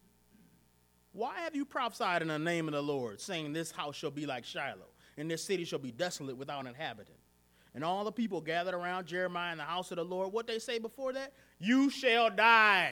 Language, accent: English, American